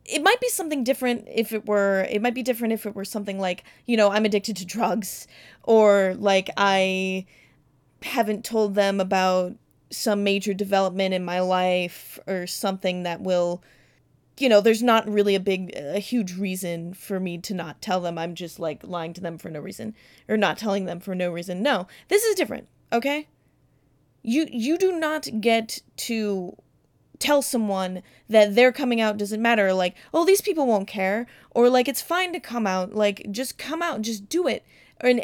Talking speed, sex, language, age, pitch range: 190 wpm, female, English, 20-39, 190-250 Hz